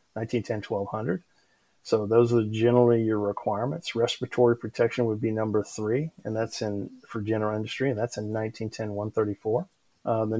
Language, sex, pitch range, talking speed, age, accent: English, male, 105-120 Hz, 155 wpm, 40-59, American